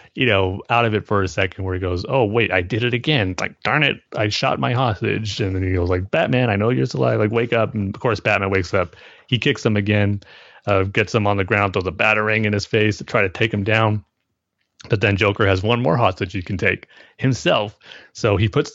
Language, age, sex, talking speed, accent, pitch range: English, 30-49, male, 255 wpm, American, 100-125 Hz